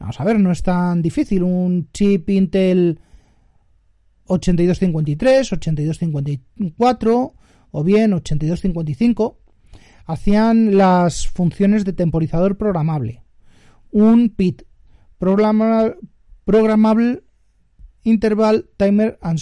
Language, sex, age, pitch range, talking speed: Spanish, male, 30-49, 150-215 Hz, 85 wpm